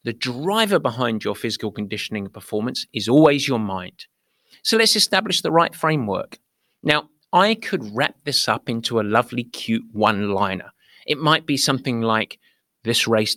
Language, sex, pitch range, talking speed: English, male, 110-160 Hz, 165 wpm